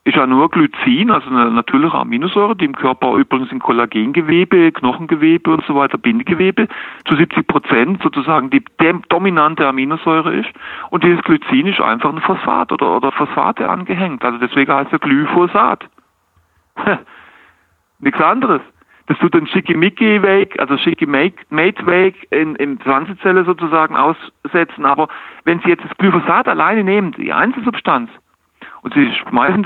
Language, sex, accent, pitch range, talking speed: German, male, German, 145-220 Hz, 140 wpm